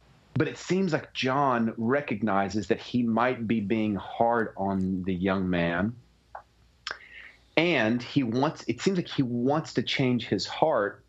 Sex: male